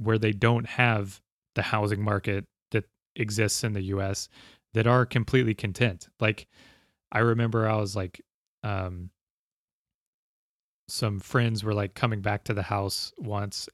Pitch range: 100-115 Hz